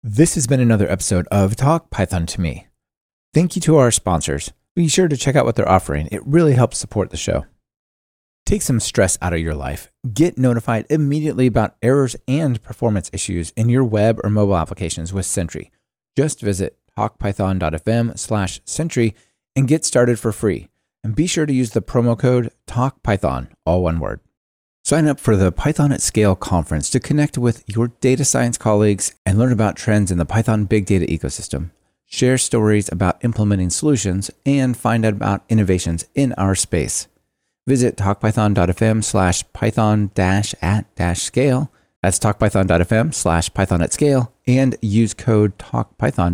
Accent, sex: American, male